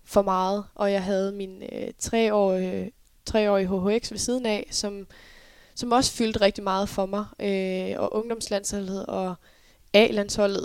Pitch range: 190-210 Hz